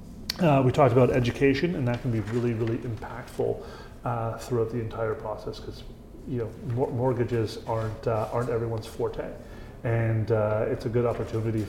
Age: 30-49